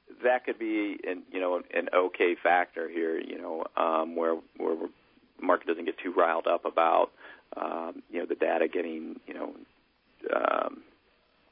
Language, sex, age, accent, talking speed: English, male, 40-59, American, 165 wpm